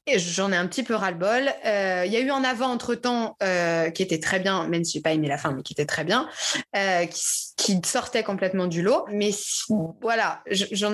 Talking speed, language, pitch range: 230 wpm, French, 180-225 Hz